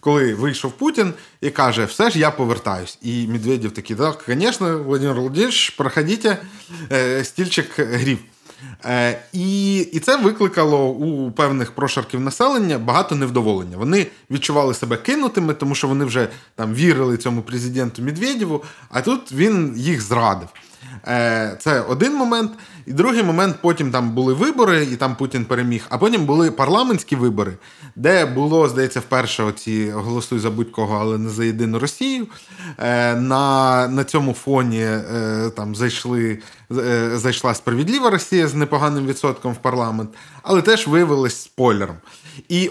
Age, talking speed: 20-39, 140 wpm